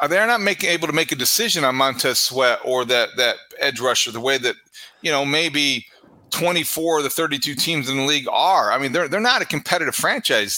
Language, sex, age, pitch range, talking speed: English, male, 40-59, 135-175 Hz, 220 wpm